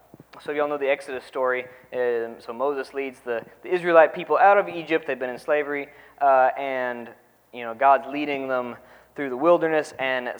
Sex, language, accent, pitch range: male, English, American, 120-145 Hz